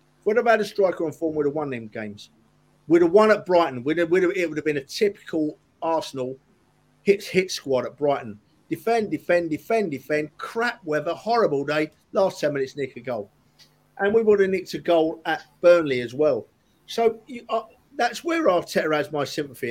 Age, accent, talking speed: 50-69, British, 205 wpm